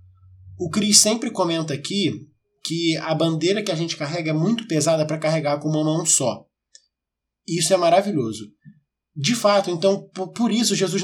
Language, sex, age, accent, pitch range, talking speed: Portuguese, male, 20-39, Brazilian, 140-180 Hz, 170 wpm